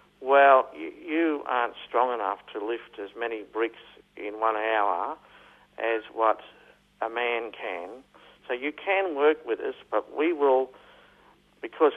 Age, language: 50-69, English